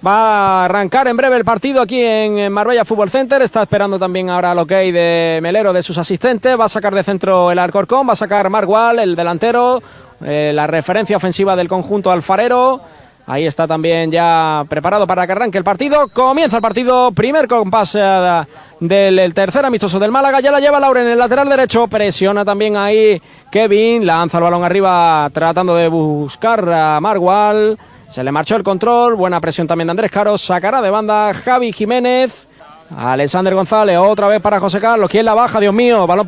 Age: 20-39